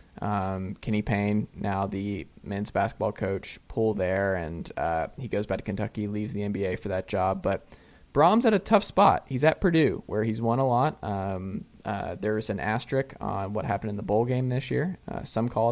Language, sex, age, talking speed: English, male, 20-39, 205 wpm